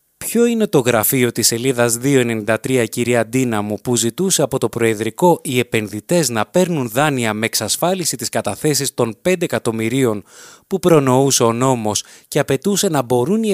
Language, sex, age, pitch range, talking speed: Greek, male, 20-39, 115-155 Hz, 160 wpm